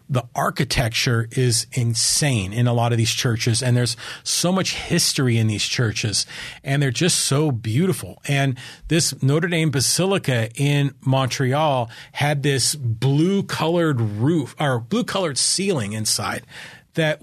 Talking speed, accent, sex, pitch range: 135 wpm, American, male, 125-155 Hz